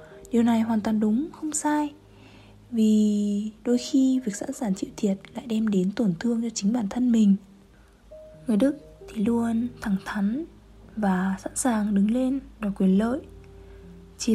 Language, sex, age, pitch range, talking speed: Vietnamese, female, 20-39, 205-270 Hz, 165 wpm